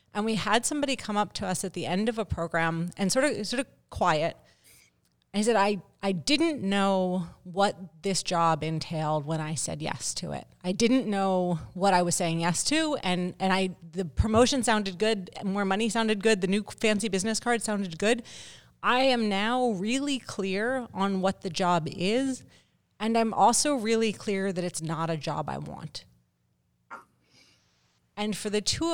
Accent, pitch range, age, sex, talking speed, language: American, 170-220 Hz, 30-49, female, 185 wpm, English